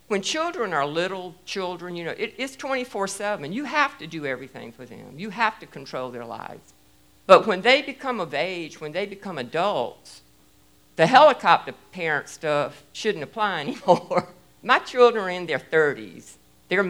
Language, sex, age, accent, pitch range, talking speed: English, female, 50-69, American, 130-200 Hz, 165 wpm